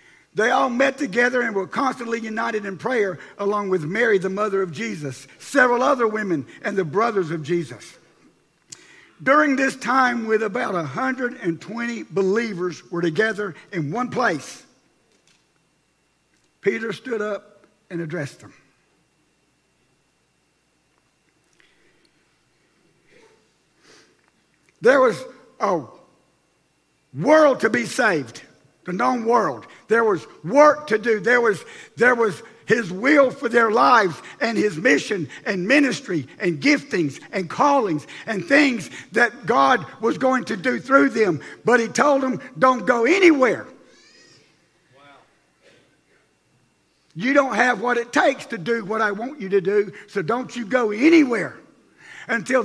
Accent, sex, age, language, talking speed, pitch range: American, male, 60-79, English, 130 wpm, 200-260 Hz